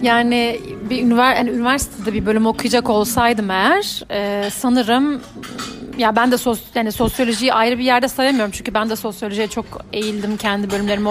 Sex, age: female, 40-59